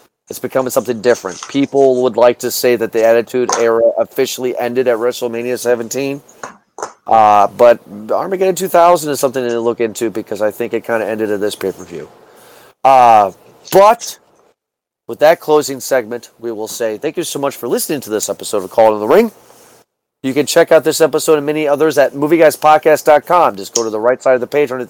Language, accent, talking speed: English, American, 200 wpm